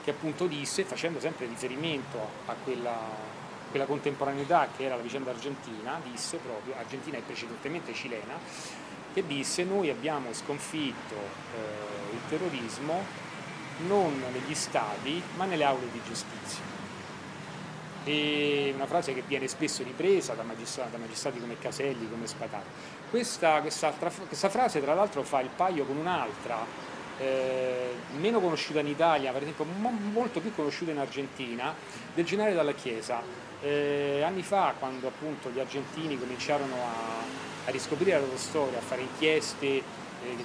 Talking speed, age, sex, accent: 145 wpm, 30-49, male, native